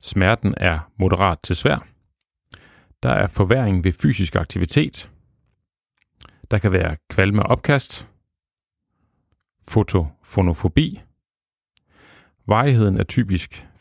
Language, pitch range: Danish, 95-130 Hz